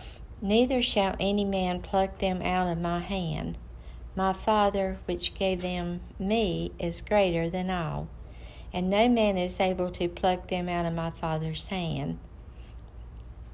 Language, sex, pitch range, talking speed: English, female, 165-195 Hz, 145 wpm